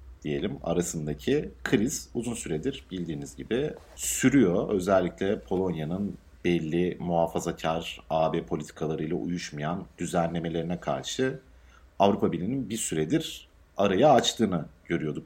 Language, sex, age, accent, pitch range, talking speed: Turkish, male, 50-69, native, 85-115 Hz, 95 wpm